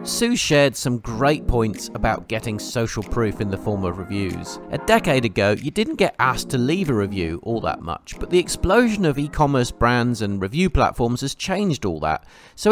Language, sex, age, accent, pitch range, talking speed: English, male, 40-59, British, 110-150 Hz, 200 wpm